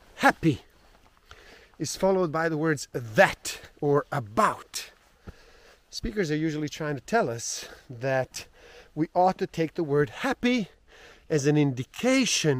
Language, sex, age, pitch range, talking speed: English, male, 30-49, 135-195 Hz, 130 wpm